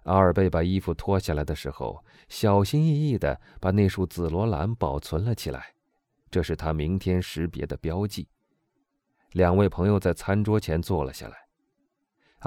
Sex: male